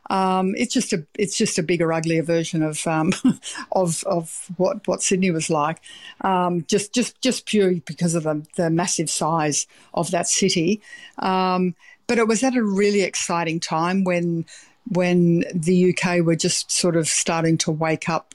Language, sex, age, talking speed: English, female, 50-69, 175 wpm